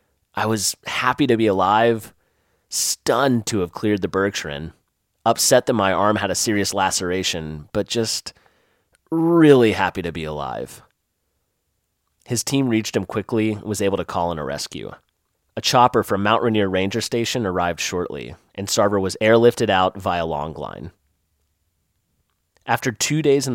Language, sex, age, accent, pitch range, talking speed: English, male, 30-49, American, 95-115 Hz, 155 wpm